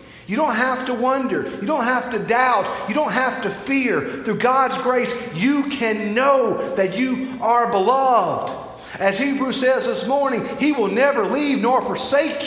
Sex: male